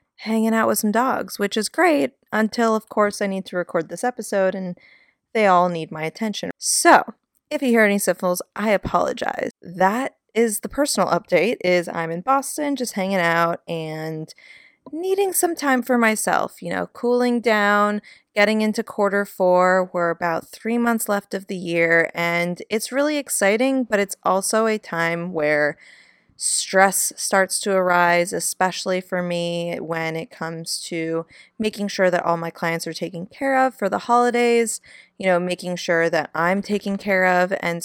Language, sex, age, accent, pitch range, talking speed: English, female, 20-39, American, 175-230 Hz, 175 wpm